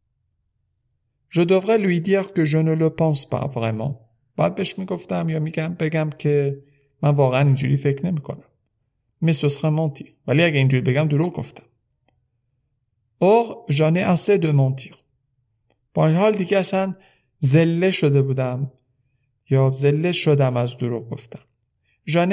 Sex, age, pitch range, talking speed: male, 50-69, 130-170 Hz, 135 wpm